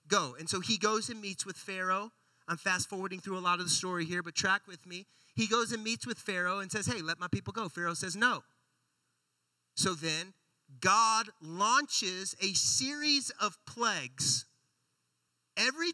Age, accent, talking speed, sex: 40-59, American, 175 wpm, male